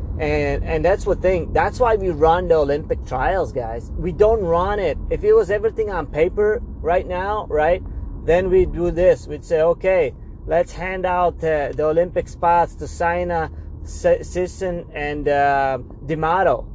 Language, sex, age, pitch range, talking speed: English, male, 30-49, 145-180 Hz, 165 wpm